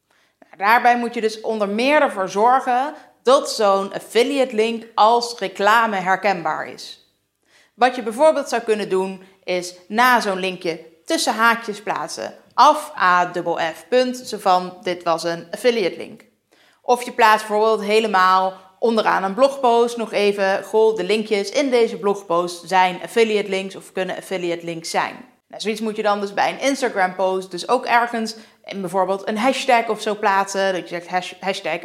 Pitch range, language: 185-230 Hz, Dutch